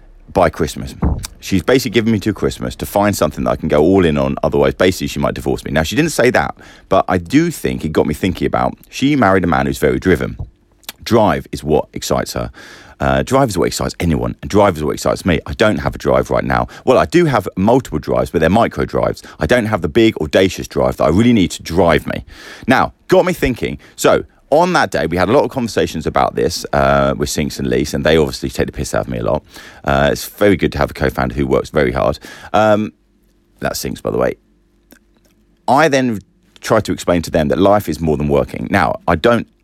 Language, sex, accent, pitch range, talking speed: English, male, British, 70-105 Hz, 240 wpm